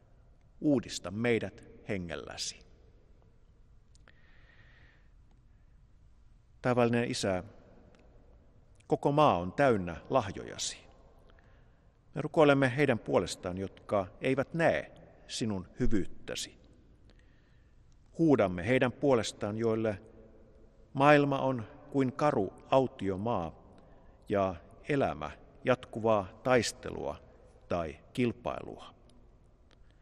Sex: male